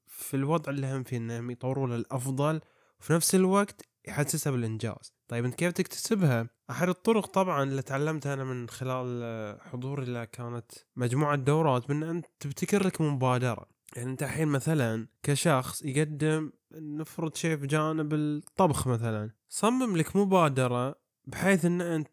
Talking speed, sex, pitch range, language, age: 145 wpm, male, 130-160 Hz, Arabic, 20-39